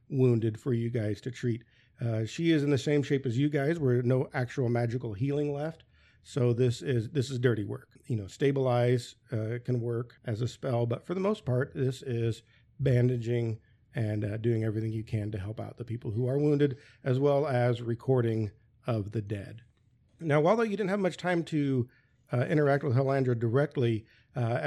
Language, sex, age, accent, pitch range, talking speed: English, male, 50-69, American, 120-145 Hz, 195 wpm